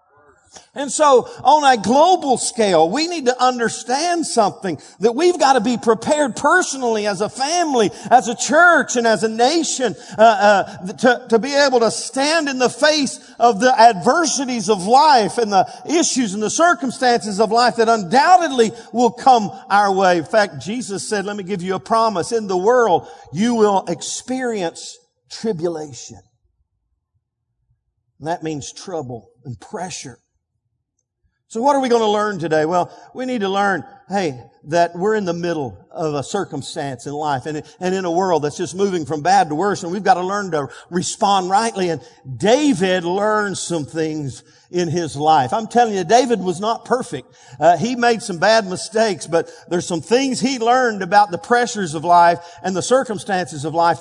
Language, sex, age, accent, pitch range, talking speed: English, male, 50-69, American, 170-245 Hz, 180 wpm